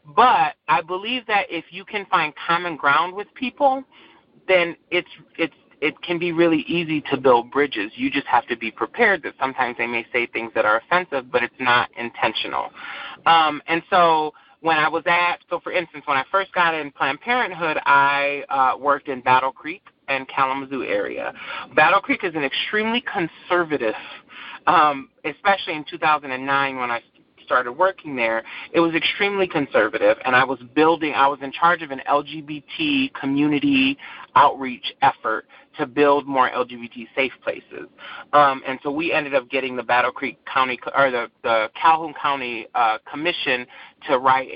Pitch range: 135-185 Hz